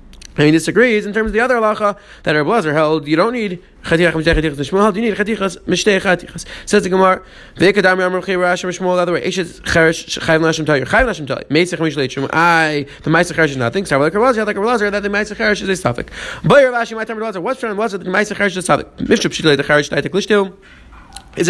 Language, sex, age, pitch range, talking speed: English, male, 30-49, 165-215 Hz, 135 wpm